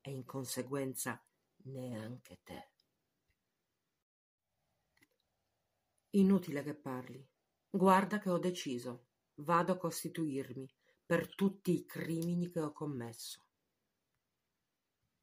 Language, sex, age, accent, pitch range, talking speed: Italian, female, 50-69, native, 140-180 Hz, 85 wpm